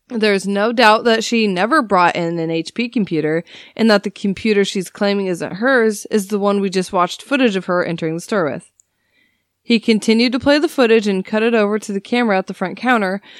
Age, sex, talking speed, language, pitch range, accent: 20-39, female, 220 wpm, English, 185-240 Hz, American